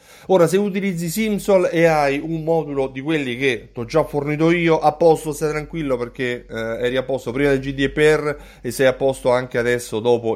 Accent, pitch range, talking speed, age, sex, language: native, 110-150 Hz, 205 wpm, 30-49, male, Italian